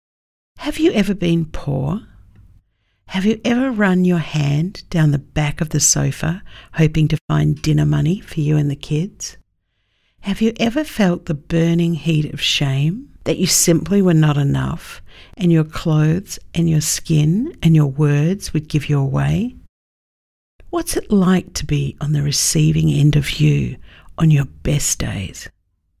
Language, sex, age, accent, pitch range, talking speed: English, female, 50-69, Australian, 140-180 Hz, 160 wpm